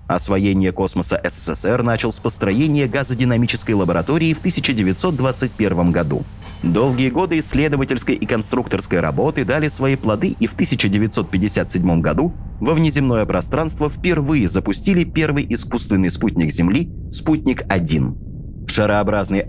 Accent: native